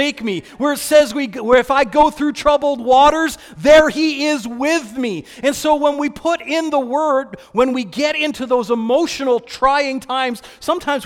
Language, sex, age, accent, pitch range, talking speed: English, male, 40-59, American, 165-245 Hz, 185 wpm